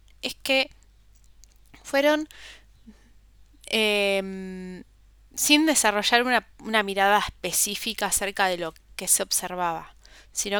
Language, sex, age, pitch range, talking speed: Spanish, female, 20-39, 195-245 Hz, 95 wpm